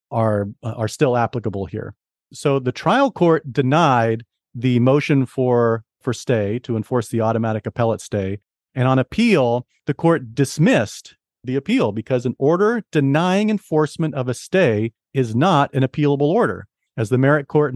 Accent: American